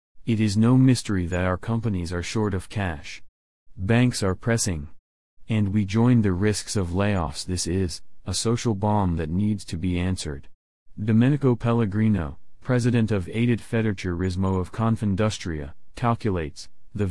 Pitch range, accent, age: 90-110 Hz, American, 30-49